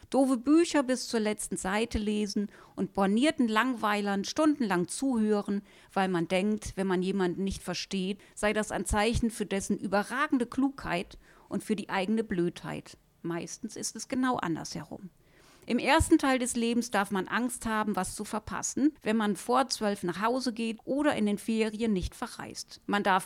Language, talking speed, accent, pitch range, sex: German, 170 wpm, German, 195-255 Hz, female